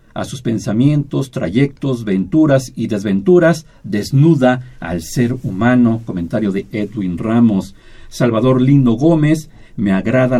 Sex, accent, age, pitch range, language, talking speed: male, Mexican, 50-69, 105-140 Hz, Spanish, 115 wpm